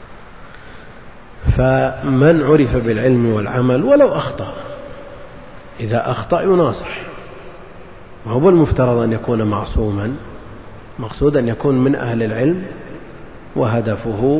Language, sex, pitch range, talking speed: Arabic, male, 110-135 Hz, 90 wpm